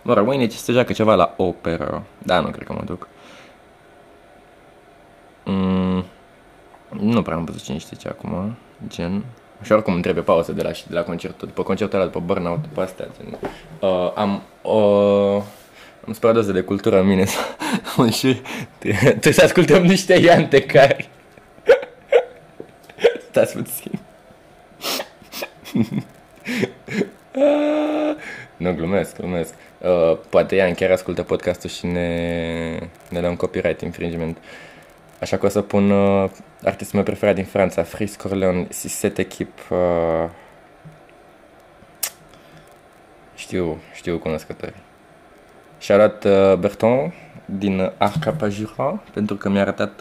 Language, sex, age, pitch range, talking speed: Romanian, male, 20-39, 90-110 Hz, 130 wpm